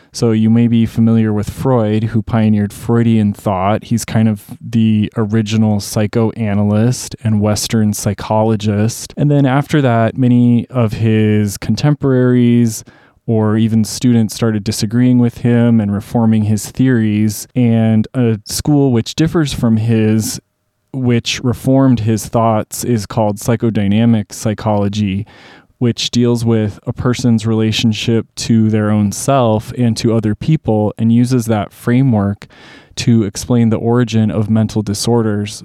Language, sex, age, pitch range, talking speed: English, male, 20-39, 110-120 Hz, 135 wpm